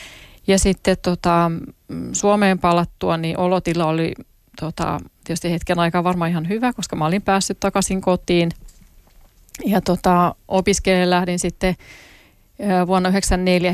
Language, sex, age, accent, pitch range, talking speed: Finnish, female, 30-49, native, 165-185 Hz, 115 wpm